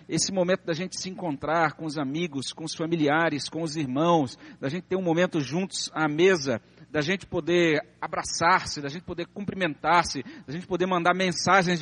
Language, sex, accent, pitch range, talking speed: Portuguese, male, Brazilian, 150-210 Hz, 185 wpm